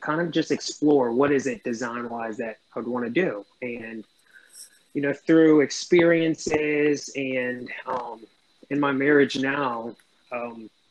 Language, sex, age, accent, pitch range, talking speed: English, male, 20-39, American, 120-145 Hz, 140 wpm